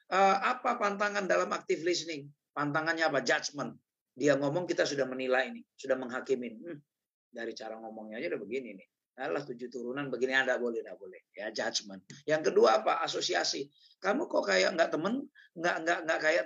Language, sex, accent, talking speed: Indonesian, male, native, 175 wpm